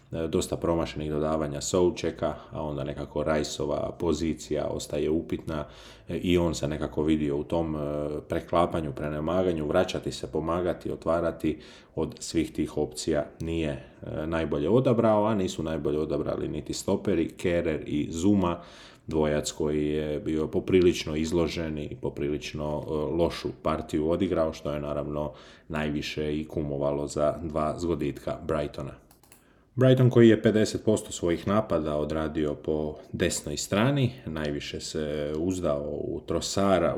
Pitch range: 75-90 Hz